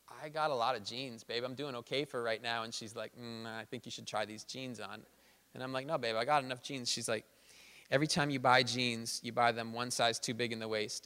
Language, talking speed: English, 275 wpm